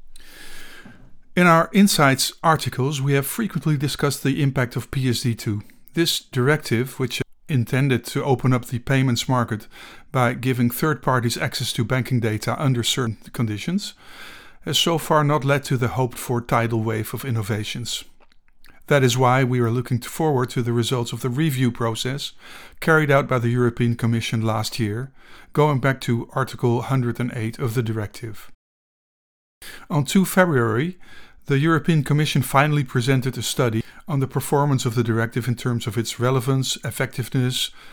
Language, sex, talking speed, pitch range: English, male, 155 wpm, 120-140 Hz